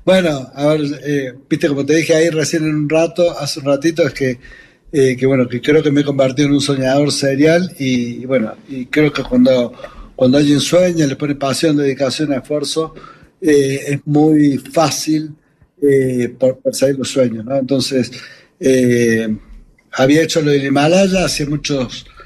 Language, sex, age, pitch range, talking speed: Spanish, male, 60-79, 130-150 Hz, 175 wpm